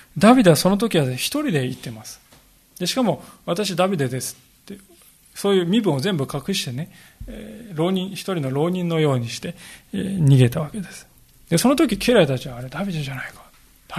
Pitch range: 140-190 Hz